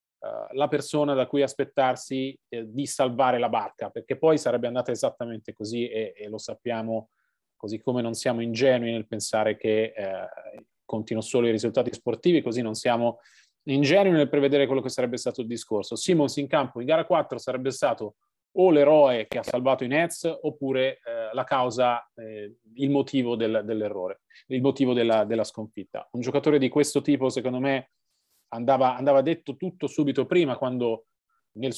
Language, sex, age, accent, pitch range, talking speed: Italian, male, 30-49, native, 125-145 Hz, 170 wpm